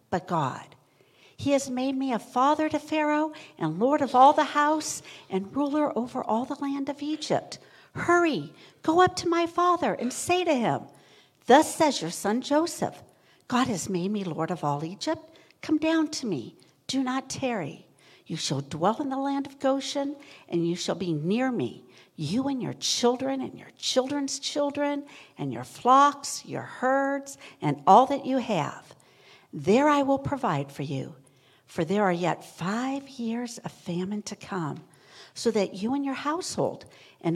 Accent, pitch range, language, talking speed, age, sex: American, 175-285 Hz, English, 175 wpm, 60-79, female